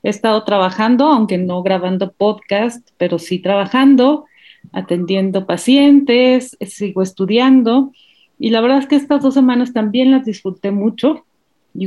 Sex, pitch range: female, 195-265 Hz